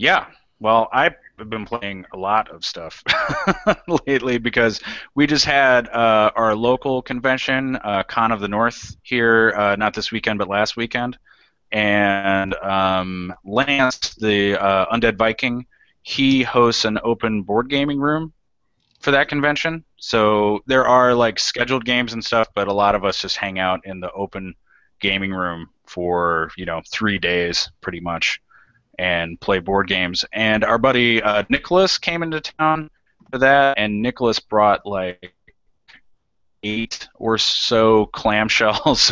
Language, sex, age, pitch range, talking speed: English, male, 30-49, 95-120 Hz, 150 wpm